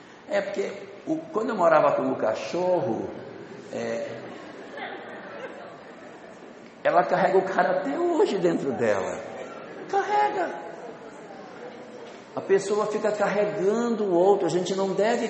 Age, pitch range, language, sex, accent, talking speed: 60-79, 160-205 Hz, Portuguese, male, Brazilian, 115 wpm